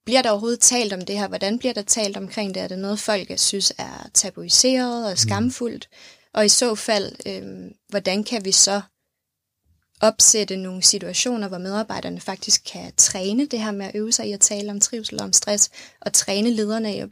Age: 20-39